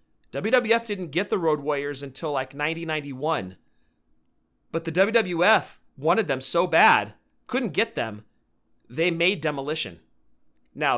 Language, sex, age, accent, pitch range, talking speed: English, male, 40-59, American, 135-180 Hz, 125 wpm